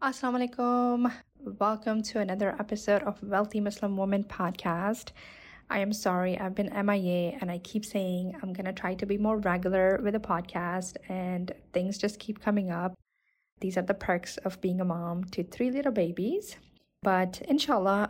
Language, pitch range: English, 185-215 Hz